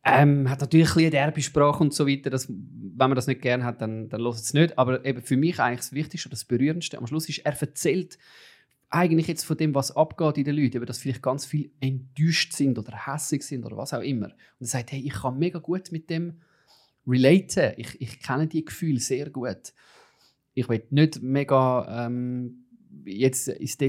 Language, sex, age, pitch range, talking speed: German, male, 30-49, 125-155 Hz, 210 wpm